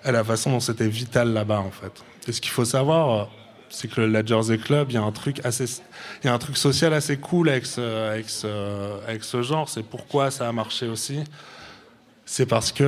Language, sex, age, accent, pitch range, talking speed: French, male, 20-39, French, 105-130 Hz, 205 wpm